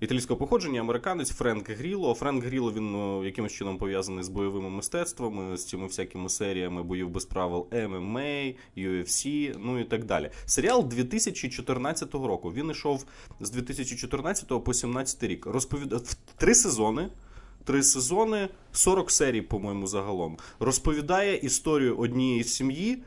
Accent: native